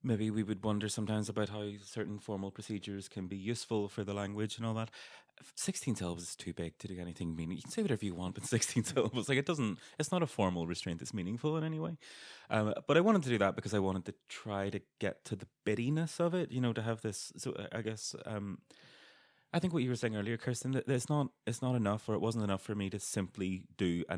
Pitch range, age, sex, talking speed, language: 95-120 Hz, 30-49, male, 250 wpm, English